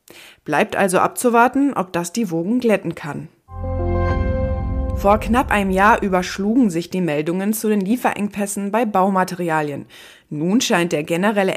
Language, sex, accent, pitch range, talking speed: German, female, German, 170-220 Hz, 135 wpm